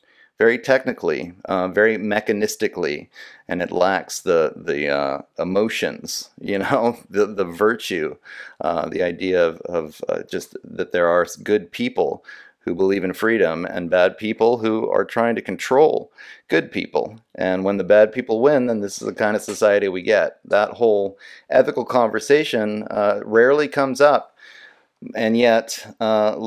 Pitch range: 100-145 Hz